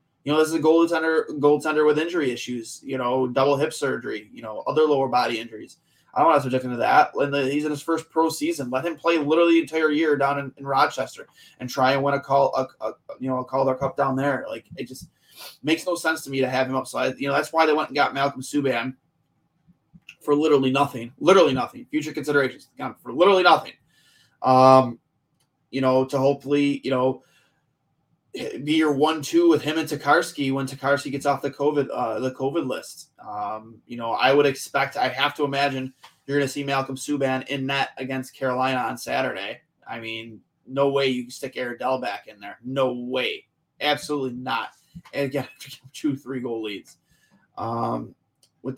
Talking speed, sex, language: 205 wpm, male, English